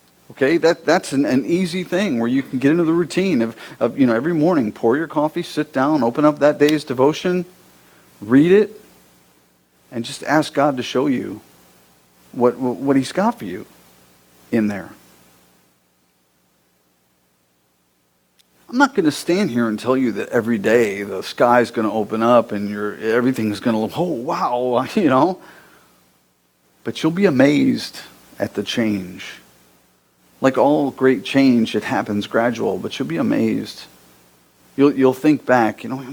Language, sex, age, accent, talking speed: English, male, 50-69, American, 165 wpm